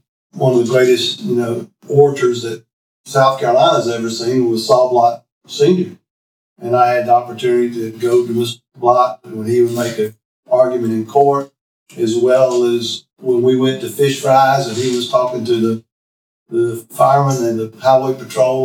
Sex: male